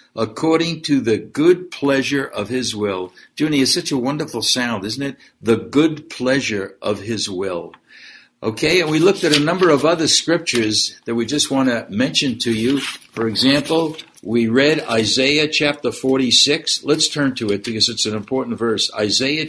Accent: American